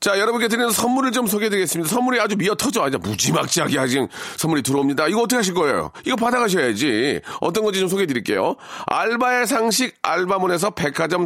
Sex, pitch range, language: male, 180-230 Hz, Korean